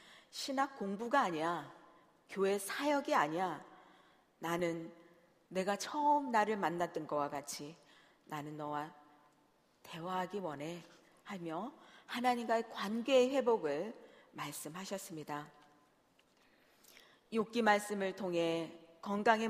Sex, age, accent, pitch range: female, 40-59, native, 160-235 Hz